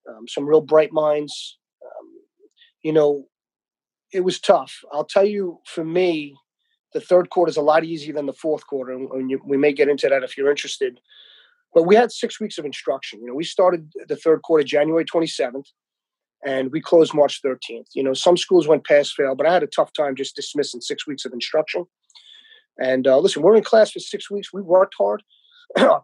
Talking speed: 205 wpm